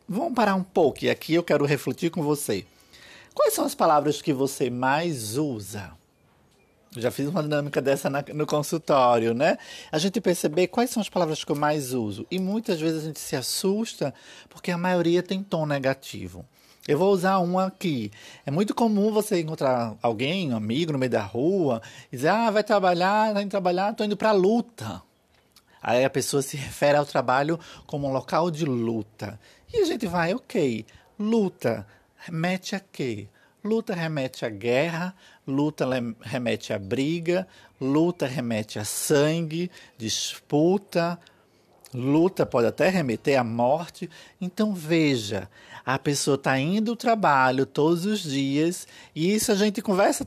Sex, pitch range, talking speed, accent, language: male, 130-190 Hz, 165 wpm, Brazilian, Portuguese